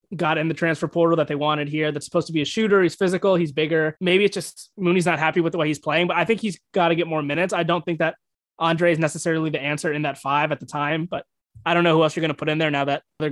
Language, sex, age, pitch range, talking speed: English, male, 20-39, 155-190 Hz, 310 wpm